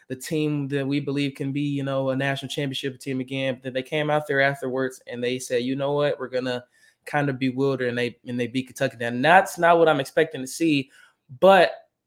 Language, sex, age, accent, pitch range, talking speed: English, male, 20-39, American, 130-150 Hz, 245 wpm